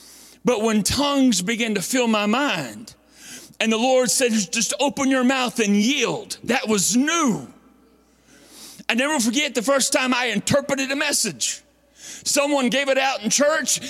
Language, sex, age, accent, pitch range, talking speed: English, male, 40-59, American, 205-280 Hz, 160 wpm